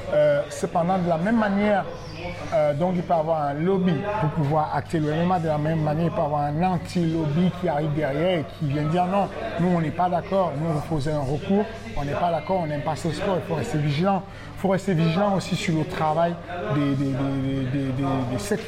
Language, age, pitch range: French, 50-69, 145-175 Hz